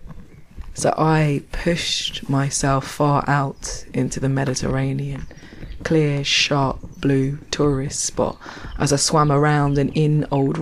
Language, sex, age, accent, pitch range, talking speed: English, female, 20-39, British, 135-155 Hz, 120 wpm